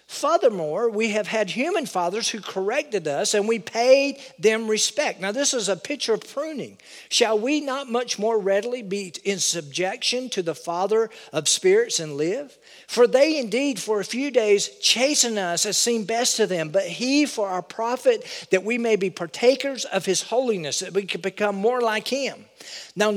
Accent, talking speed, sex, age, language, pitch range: American, 185 wpm, male, 50-69, English, 190-265 Hz